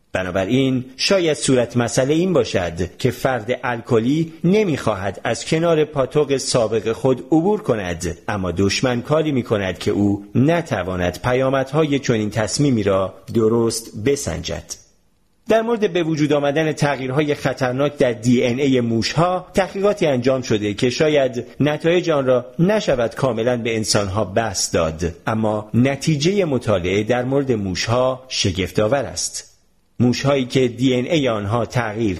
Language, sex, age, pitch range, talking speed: Persian, male, 40-59, 110-145 Hz, 135 wpm